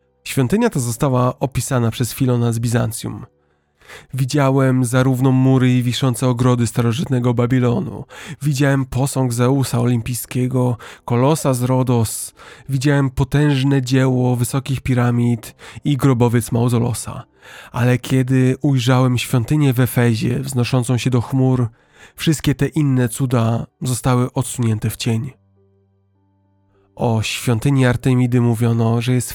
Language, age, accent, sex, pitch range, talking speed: Polish, 20-39, native, male, 120-135 Hz, 110 wpm